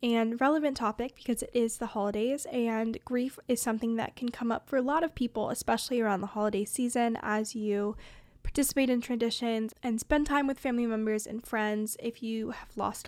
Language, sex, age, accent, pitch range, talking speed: English, female, 10-29, American, 220-250 Hz, 195 wpm